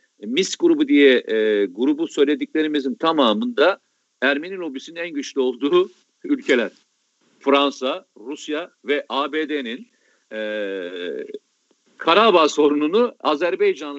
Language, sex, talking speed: Turkish, male, 90 wpm